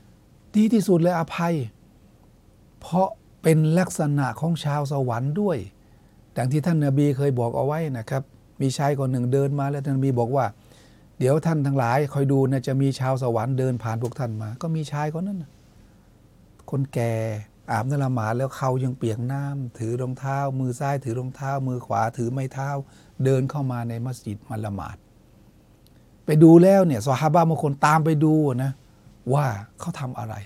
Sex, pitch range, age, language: male, 120-145 Hz, 60-79, Thai